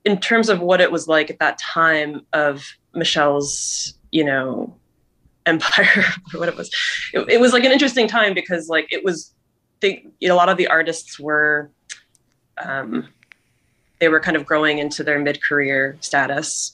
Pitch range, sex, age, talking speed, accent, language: 140-170 Hz, female, 20-39, 165 wpm, American, English